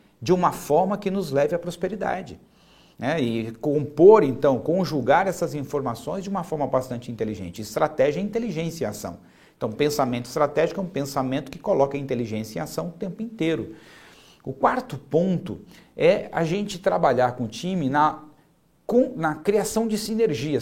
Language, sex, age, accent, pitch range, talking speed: Portuguese, male, 50-69, Brazilian, 140-195 Hz, 160 wpm